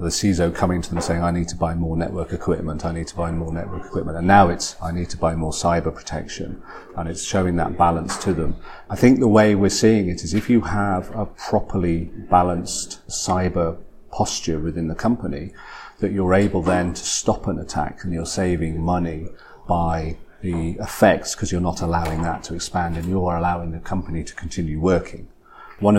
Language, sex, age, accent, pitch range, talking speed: English, male, 40-59, British, 85-100 Hz, 200 wpm